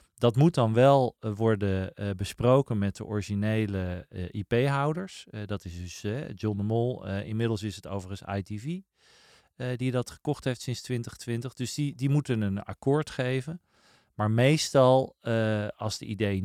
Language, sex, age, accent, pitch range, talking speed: Dutch, male, 40-59, Dutch, 105-130 Hz, 170 wpm